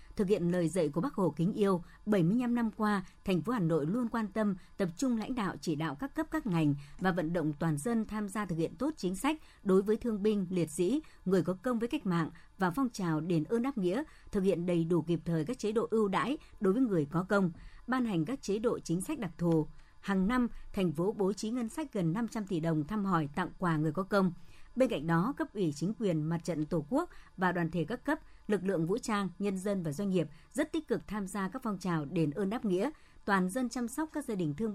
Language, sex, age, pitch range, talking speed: Vietnamese, male, 60-79, 170-225 Hz, 255 wpm